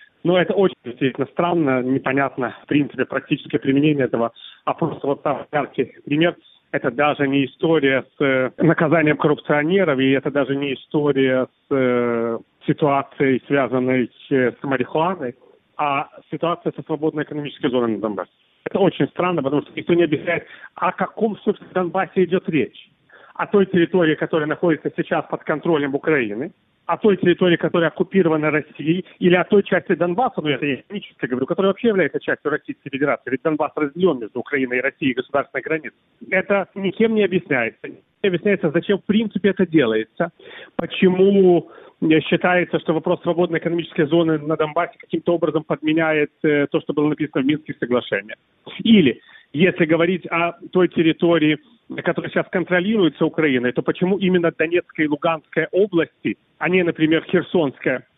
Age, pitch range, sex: 40-59, 145-180 Hz, male